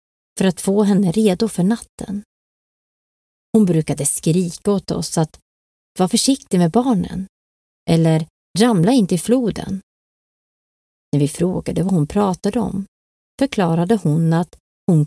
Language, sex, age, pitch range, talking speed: Swedish, female, 30-49, 160-205 Hz, 130 wpm